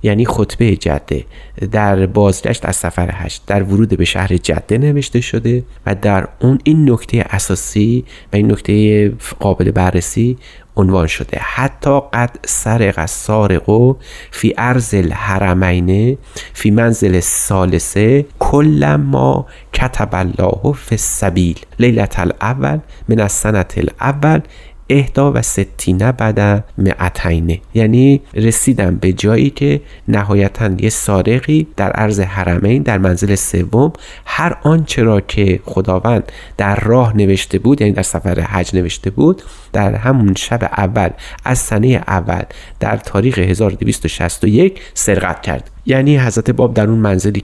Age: 30-49